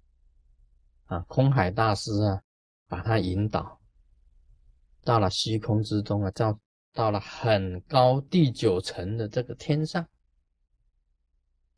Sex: male